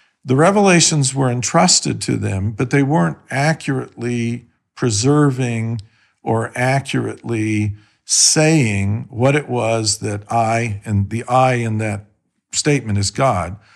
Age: 50-69